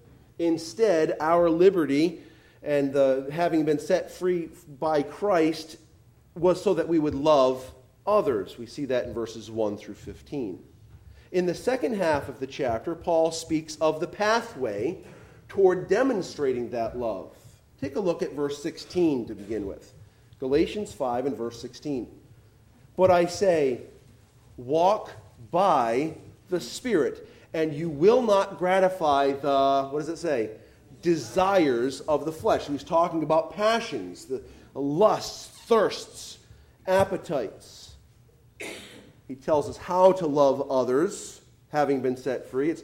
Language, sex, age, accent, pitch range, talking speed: English, male, 40-59, American, 135-180 Hz, 135 wpm